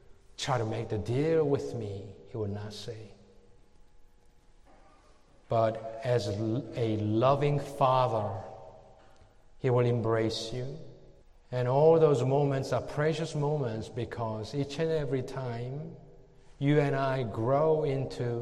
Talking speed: 120 wpm